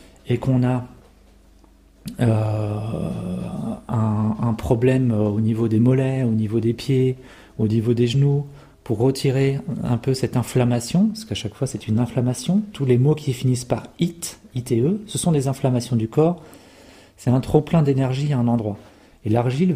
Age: 40-59